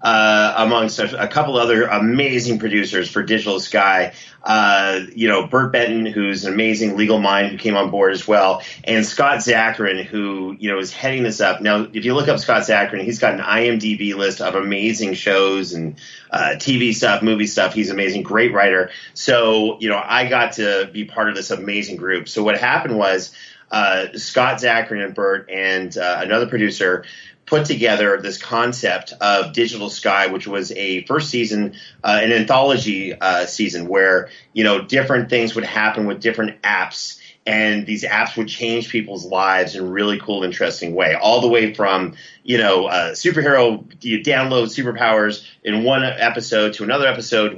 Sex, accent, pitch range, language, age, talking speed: male, American, 100-115 Hz, English, 30-49, 180 wpm